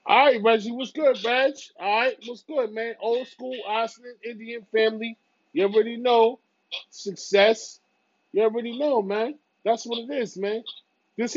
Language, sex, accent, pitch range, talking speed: English, male, American, 170-230 Hz, 160 wpm